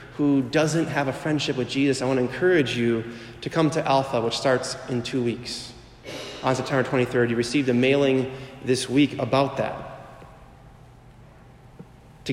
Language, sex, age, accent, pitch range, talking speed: English, male, 30-49, American, 125-145 Hz, 160 wpm